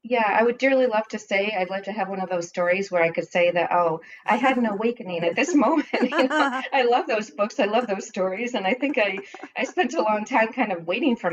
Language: English